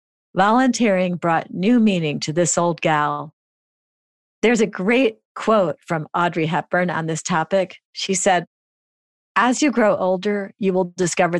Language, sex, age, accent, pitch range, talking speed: English, female, 50-69, American, 170-210 Hz, 140 wpm